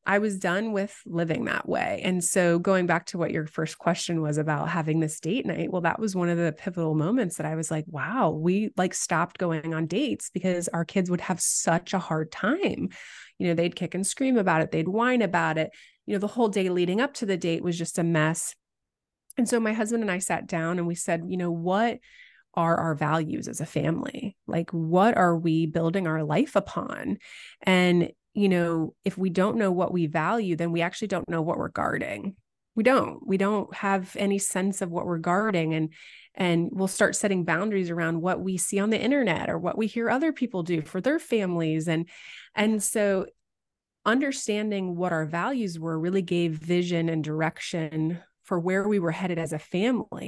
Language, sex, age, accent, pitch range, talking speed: English, female, 20-39, American, 165-205 Hz, 210 wpm